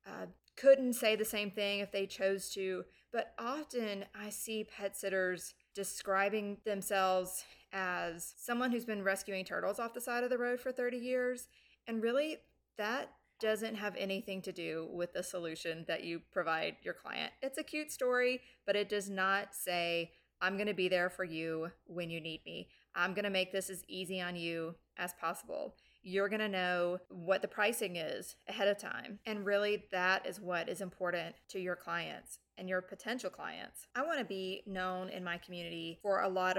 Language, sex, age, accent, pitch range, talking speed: English, female, 30-49, American, 175-210 Hz, 190 wpm